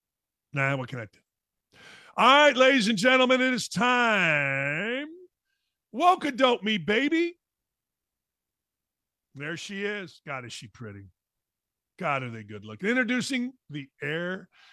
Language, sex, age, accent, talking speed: English, male, 50-69, American, 140 wpm